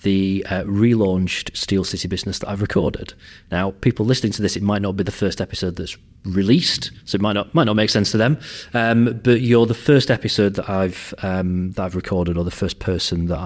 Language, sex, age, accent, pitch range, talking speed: English, male, 30-49, British, 90-115 Hz, 230 wpm